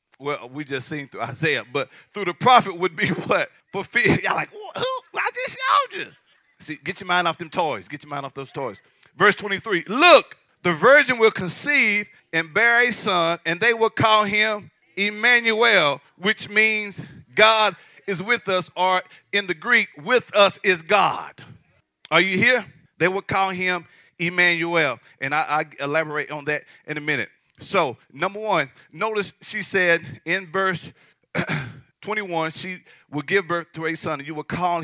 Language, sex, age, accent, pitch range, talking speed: English, male, 40-59, American, 150-195 Hz, 175 wpm